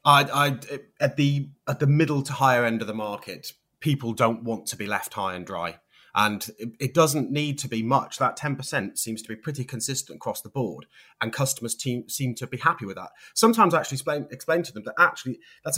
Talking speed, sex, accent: 225 wpm, male, British